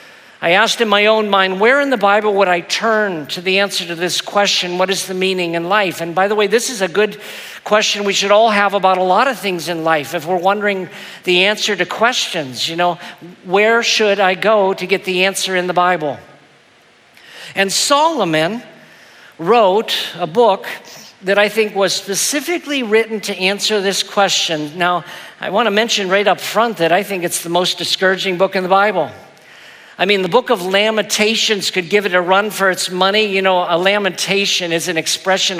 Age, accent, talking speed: 50-69, American, 200 wpm